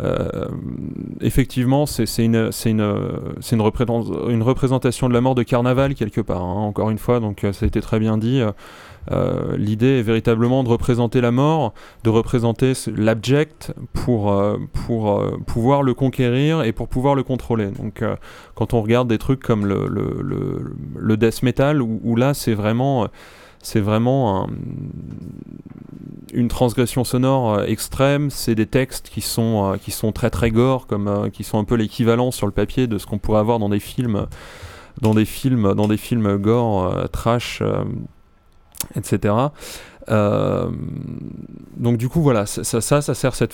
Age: 30-49